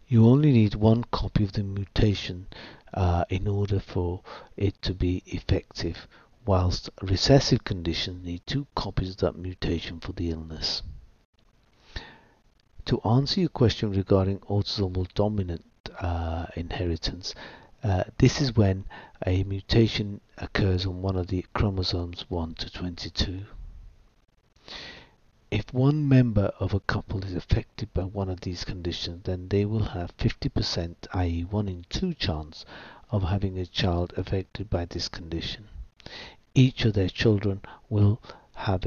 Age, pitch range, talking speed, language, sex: 60-79, 90-110 Hz, 135 wpm, English, male